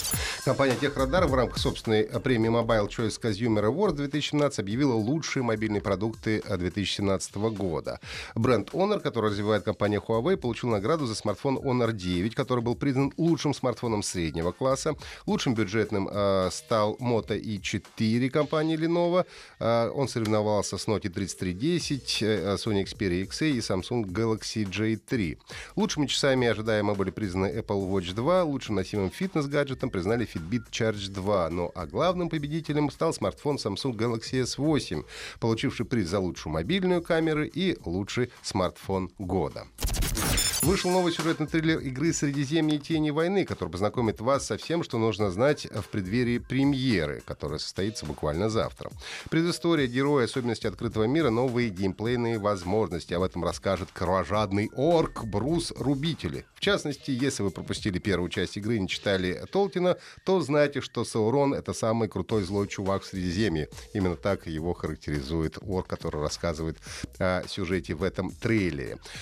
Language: Russian